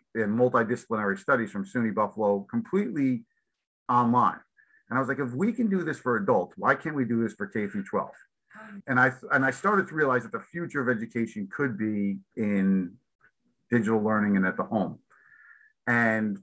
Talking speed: 180 wpm